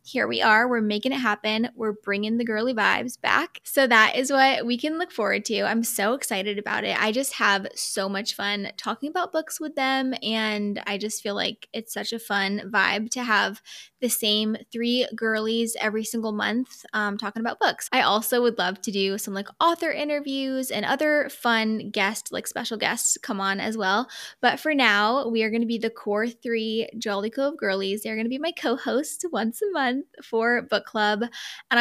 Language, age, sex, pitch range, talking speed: English, 10-29, female, 210-255 Hz, 205 wpm